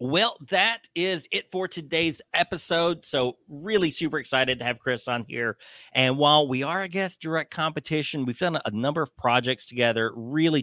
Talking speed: 180 wpm